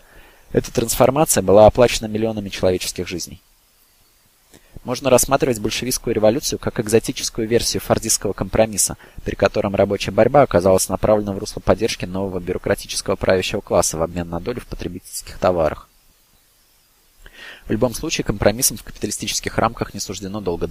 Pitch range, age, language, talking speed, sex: 95-115 Hz, 20-39, Russian, 135 wpm, male